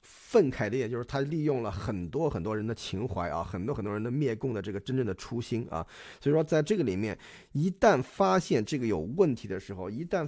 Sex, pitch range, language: male, 115-165 Hz, Chinese